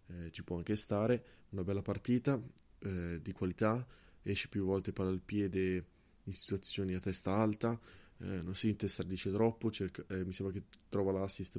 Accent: native